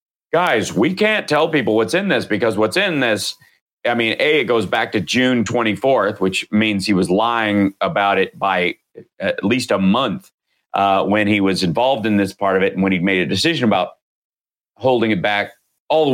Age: 30-49